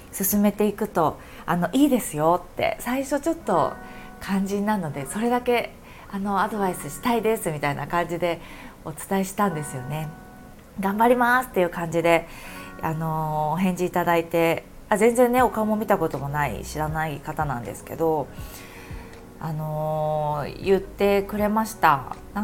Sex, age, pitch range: female, 20-39, 155-240 Hz